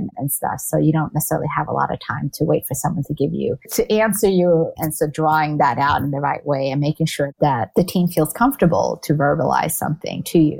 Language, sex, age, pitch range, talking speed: English, female, 30-49, 150-170 Hz, 245 wpm